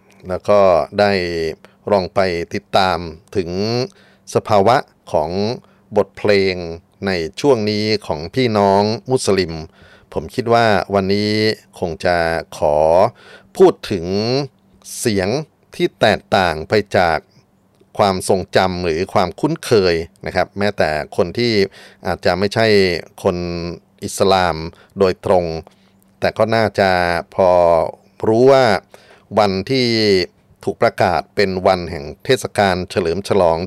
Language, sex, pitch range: Thai, male, 85-105 Hz